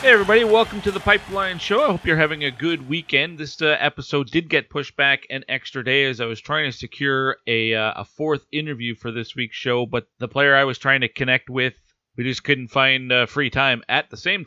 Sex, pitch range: male, 115-150 Hz